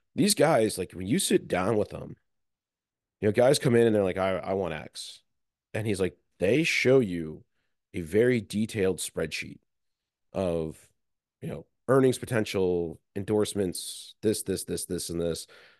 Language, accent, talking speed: English, American, 165 wpm